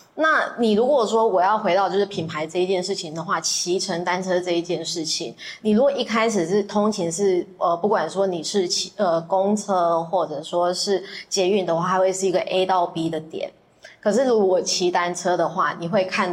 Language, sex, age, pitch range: Chinese, female, 20-39, 175-210 Hz